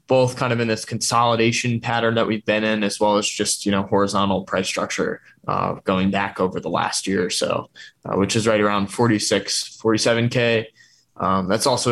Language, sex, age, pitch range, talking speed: English, male, 20-39, 105-120 Hz, 200 wpm